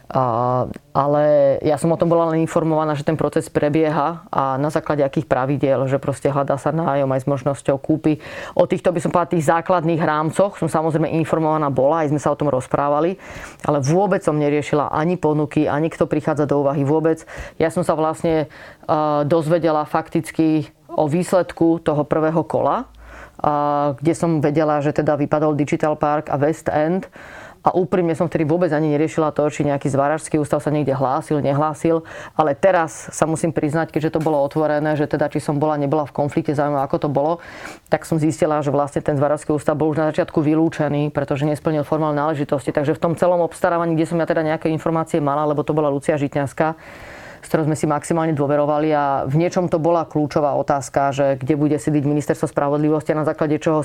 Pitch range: 145-165 Hz